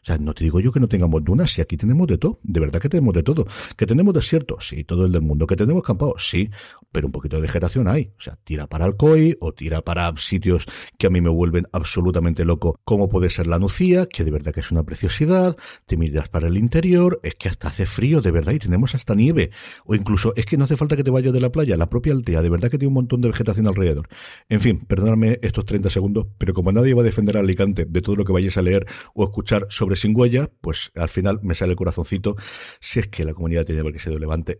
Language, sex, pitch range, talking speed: Spanish, male, 85-120 Hz, 260 wpm